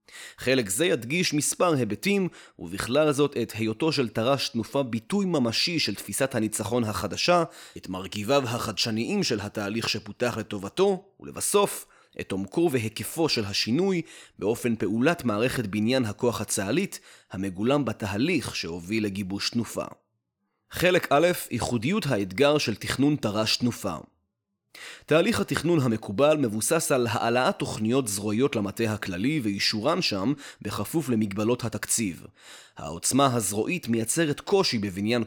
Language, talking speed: Hebrew, 120 wpm